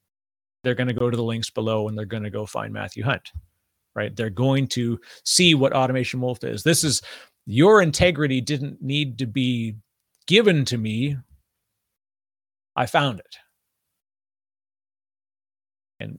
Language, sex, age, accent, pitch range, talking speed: English, male, 30-49, American, 110-145 Hz, 150 wpm